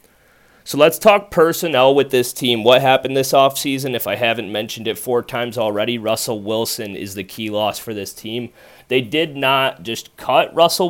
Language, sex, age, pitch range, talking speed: English, male, 30-49, 105-130 Hz, 185 wpm